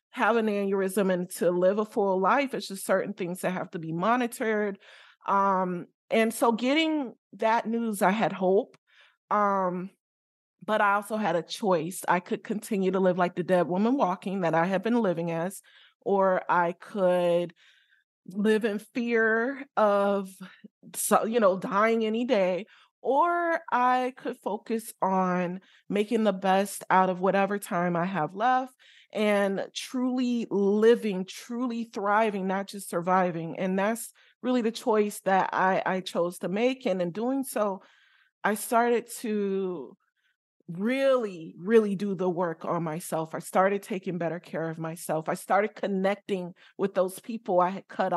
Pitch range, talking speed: 185-225 Hz, 160 wpm